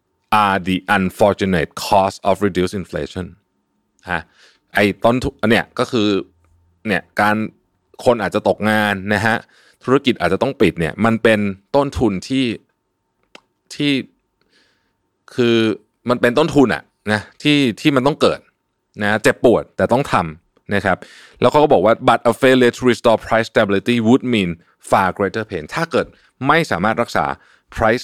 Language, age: Thai, 20-39